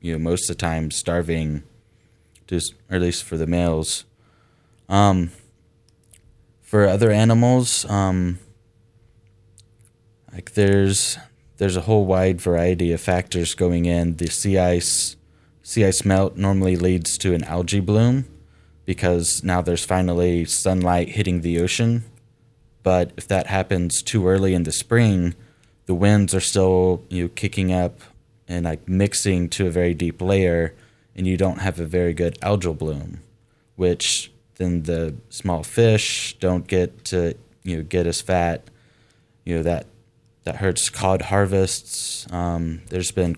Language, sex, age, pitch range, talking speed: English, male, 20-39, 85-110 Hz, 145 wpm